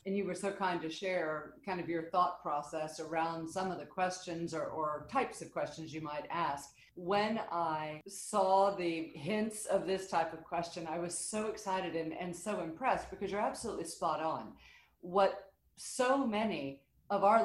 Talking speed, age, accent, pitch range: 180 wpm, 50-69, American, 165-215 Hz